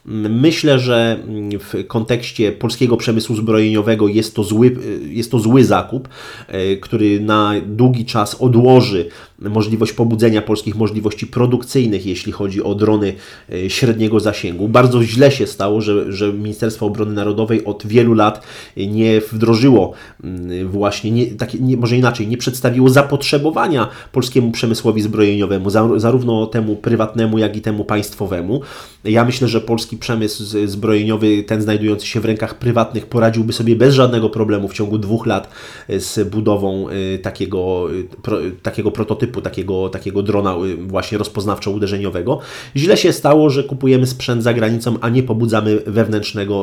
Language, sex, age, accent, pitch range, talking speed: Polish, male, 30-49, native, 105-120 Hz, 135 wpm